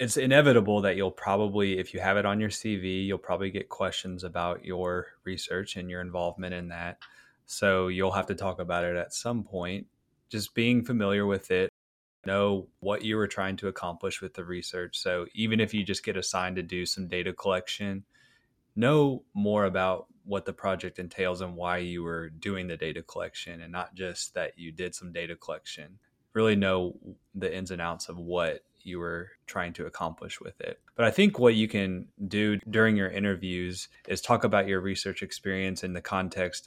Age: 20-39